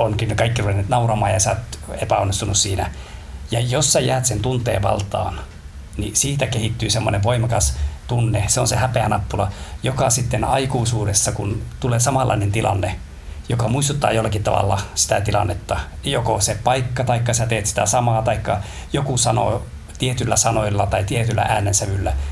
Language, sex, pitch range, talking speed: Finnish, male, 100-120 Hz, 145 wpm